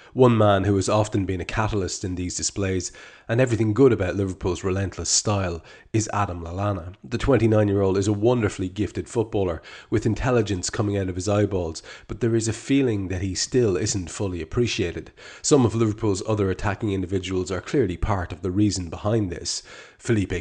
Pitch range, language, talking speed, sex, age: 90-110 Hz, English, 180 wpm, male, 30-49